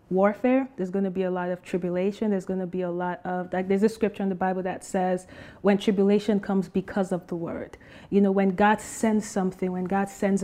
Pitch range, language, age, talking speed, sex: 185-210 Hz, English, 30-49, 235 wpm, female